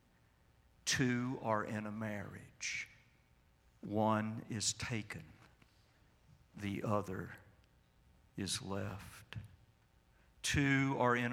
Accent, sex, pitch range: American, male, 100-120 Hz